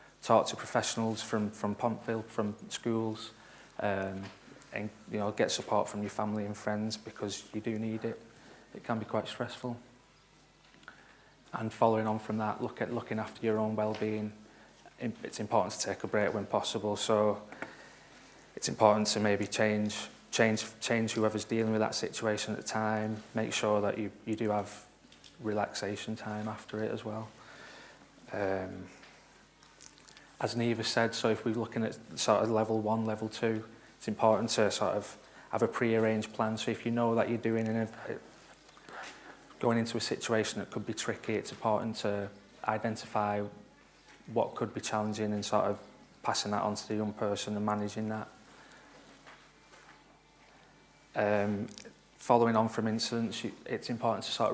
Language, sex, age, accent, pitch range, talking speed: English, male, 30-49, British, 105-115 Hz, 165 wpm